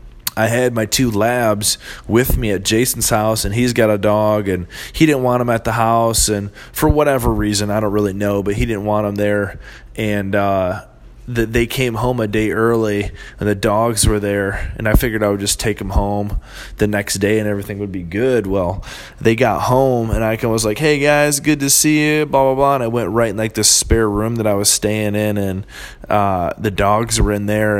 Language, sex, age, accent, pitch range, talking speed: English, male, 20-39, American, 100-115 Hz, 230 wpm